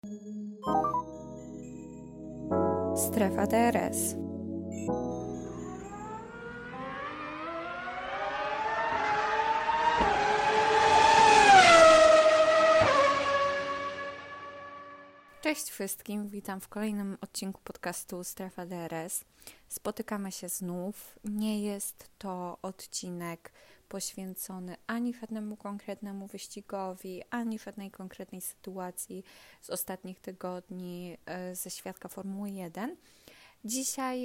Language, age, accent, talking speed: Polish, 20-39, native, 60 wpm